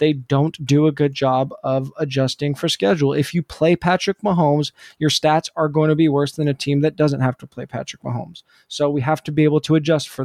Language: English